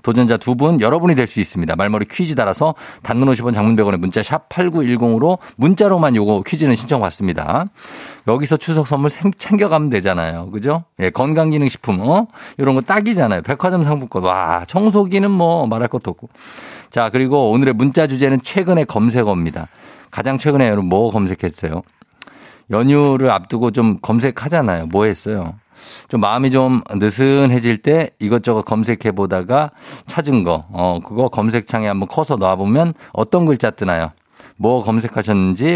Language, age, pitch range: Korean, 50-69, 105-150 Hz